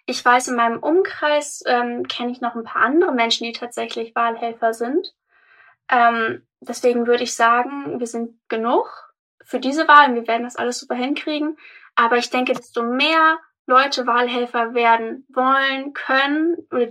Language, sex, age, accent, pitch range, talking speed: German, female, 10-29, German, 235-290 Hz, 160 wpm